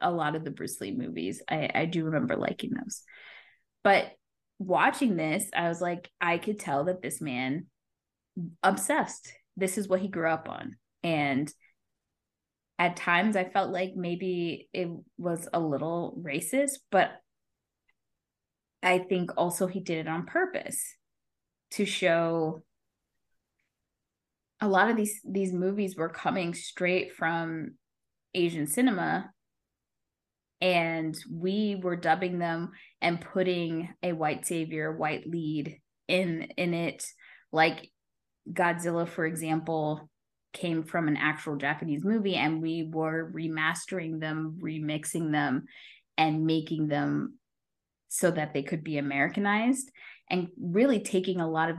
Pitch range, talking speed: 160-190 Hz, 135 wpm